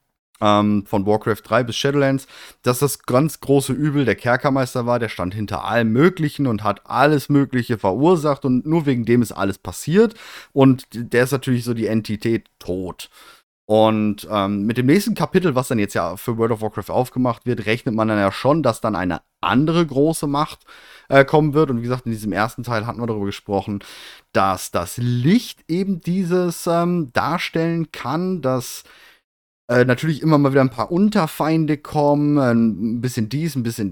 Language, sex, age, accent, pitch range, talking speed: German, male, 30-49, German, 110-150 Hz, 180 wpm